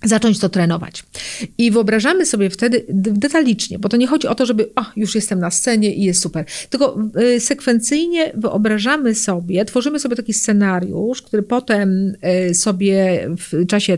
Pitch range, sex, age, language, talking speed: 195-260 Hz, female, 40-59, Polish, 150 wpm